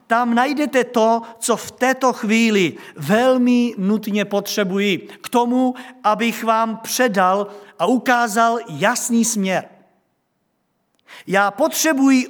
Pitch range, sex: 190-240 Hz, male